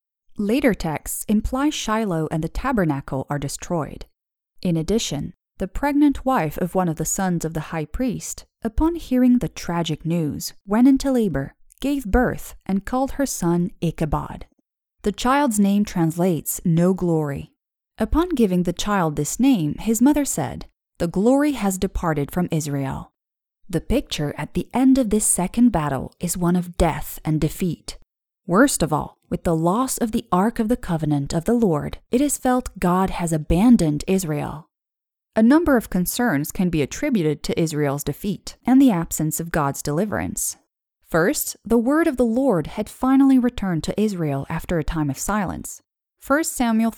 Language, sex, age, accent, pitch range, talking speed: English, female, 30-49, American, 160-240 Hz, 165 wpm